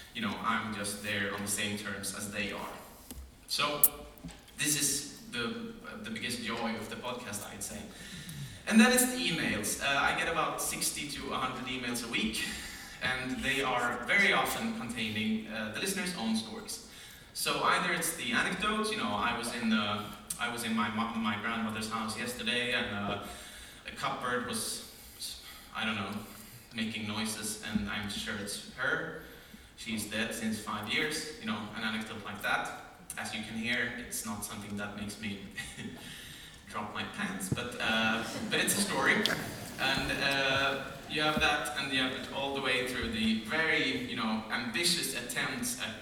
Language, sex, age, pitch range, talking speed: French, male, 30-49, 105-140 Hz, 180 wpm